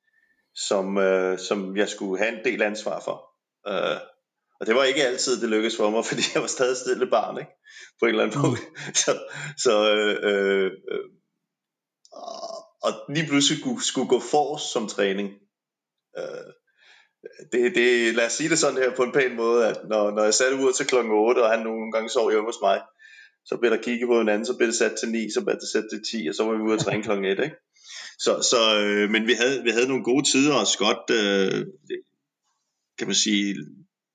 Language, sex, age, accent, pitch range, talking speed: Danish, male, 30-49, native, 100-140 Hz, 215 wpm